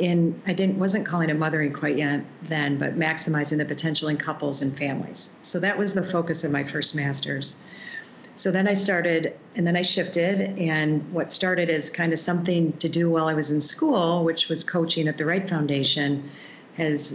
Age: 40-59